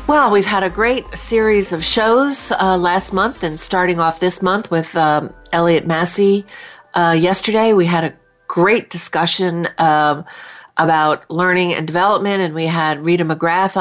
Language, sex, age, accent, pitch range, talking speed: English, female, 50-69, American, 155-195 Hz, 160 wpm